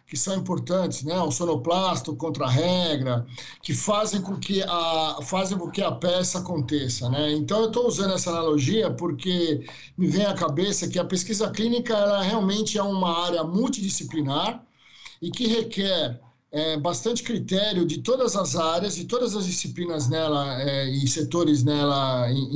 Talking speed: 155 wpm